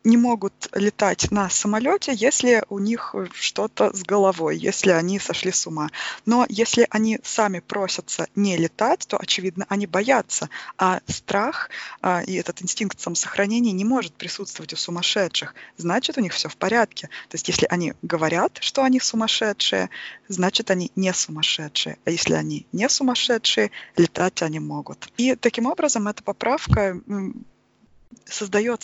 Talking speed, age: 150 wpm, 20-39